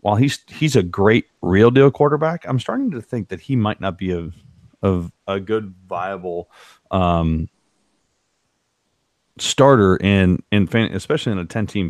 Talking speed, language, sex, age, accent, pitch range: 150 wpm, English, male, 30-49, American, 90-110 Hz